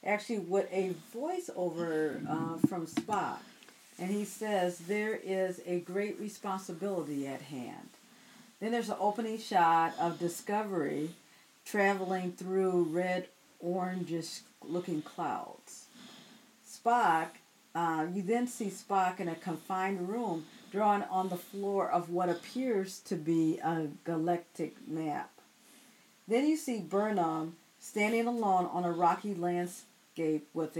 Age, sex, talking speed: 50-69, female, 120 wpm